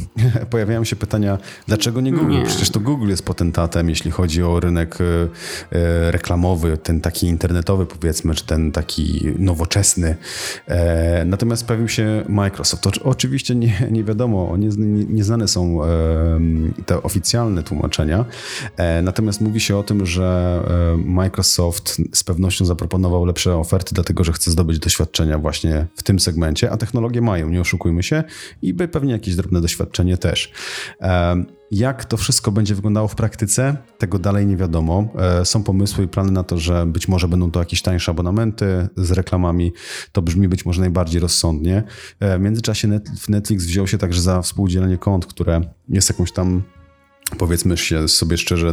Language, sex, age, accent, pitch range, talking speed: Polish, male, 30-49, native, 85-105 Hz, 155 wpm